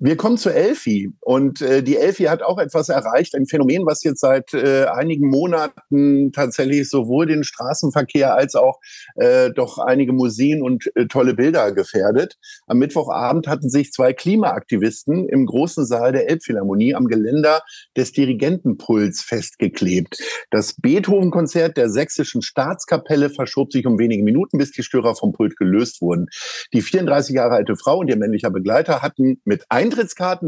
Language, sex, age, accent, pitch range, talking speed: German, male, 50-69, German, 120-175 Hz, 160 wpm